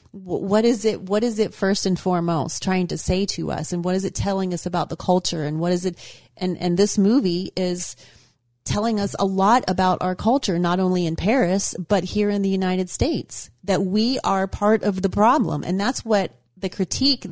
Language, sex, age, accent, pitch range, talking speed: English, female, 30-49, American, 175-205 Hz, 210 wpm